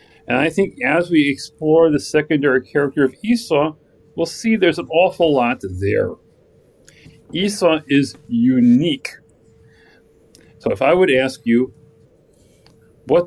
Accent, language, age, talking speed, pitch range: American, English, 40-59, 125 wpm, 130-175 Hz